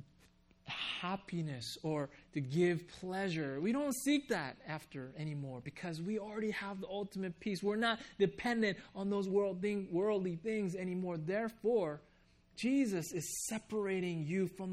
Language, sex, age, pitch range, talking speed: English, male, 20-39, 150-195 Hz, 140 wpm